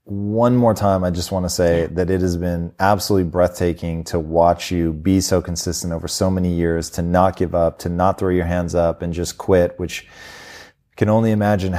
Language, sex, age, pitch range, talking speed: English, male, 30-49, 90-100 Hz, 210 wpm